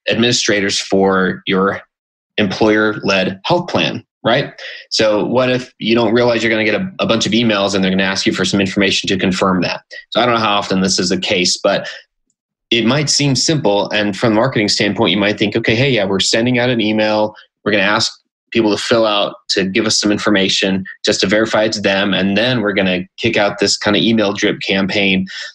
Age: 20-39